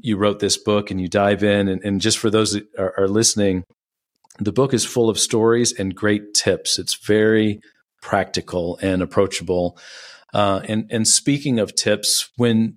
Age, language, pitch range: 40-59, English, 95-115 Hz